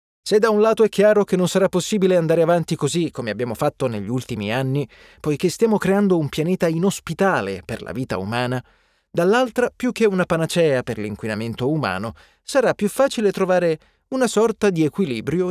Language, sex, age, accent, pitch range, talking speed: Italian, male, 20-39, native, 125-200 Hz, 175 wpm